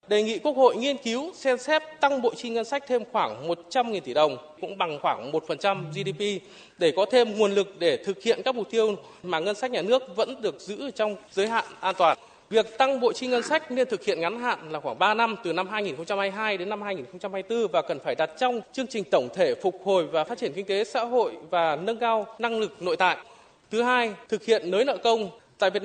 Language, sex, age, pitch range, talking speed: Vietnamese, male, 20-39, 200-250 Hz, 235 wpm